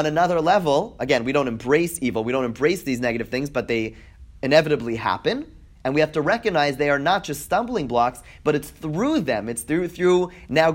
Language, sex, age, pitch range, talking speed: English, male, 30-49, 125-160 Hz, 205 wpm